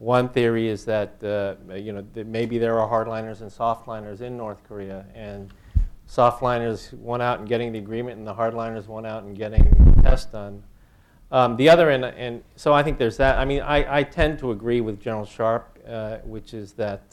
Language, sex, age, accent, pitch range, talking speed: English, male, 40-59, American, 100-125 Hz, 205 wpm